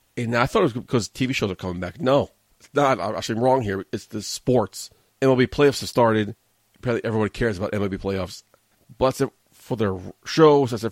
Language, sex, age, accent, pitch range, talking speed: English, male, 30-49, American, 105-130 Hz, 215 wpm